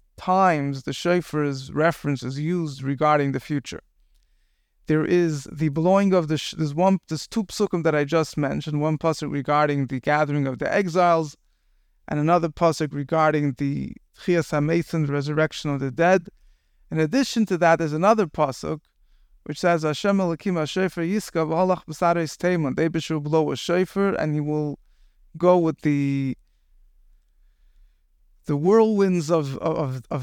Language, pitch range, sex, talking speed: English, 140-175 Hz, male, 135 wpm